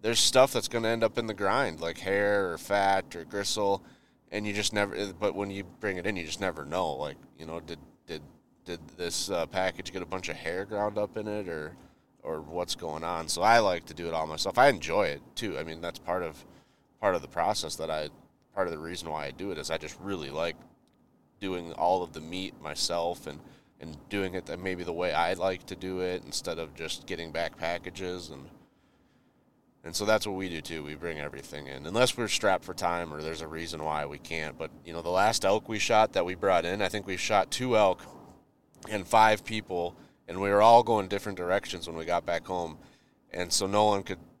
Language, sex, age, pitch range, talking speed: English, male, 30-49, 85-105 Hz, 235 wpm